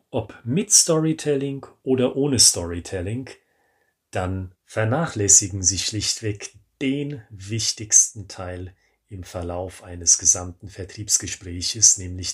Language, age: German, 30-49